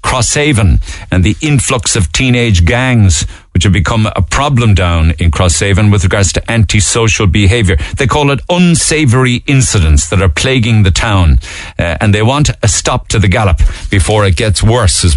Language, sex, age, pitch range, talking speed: English, male, 50-69, 85-115 Hz, 175 wpm